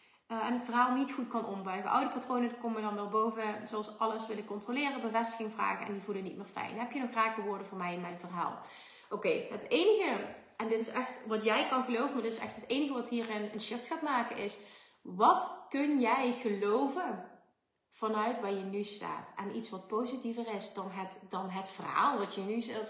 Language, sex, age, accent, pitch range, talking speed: Dutch, female, 30-49, Dutch, 205-250 Hz, 220 wpm